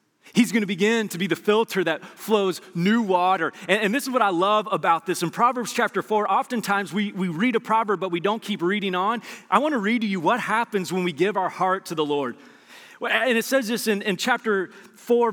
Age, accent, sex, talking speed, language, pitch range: 30-49, American, male, 240 wpm, English, 195-250 Hz